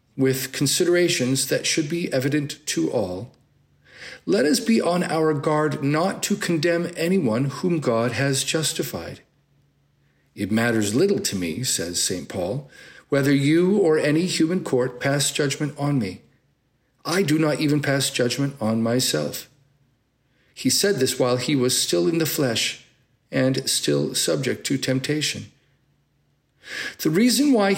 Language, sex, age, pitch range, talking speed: English, male, 40-59, 125-160 Hz, 145 wpm